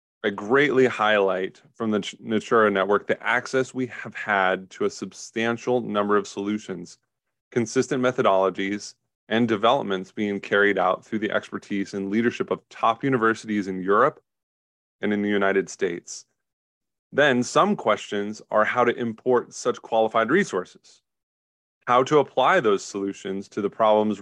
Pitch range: 100-120 Hz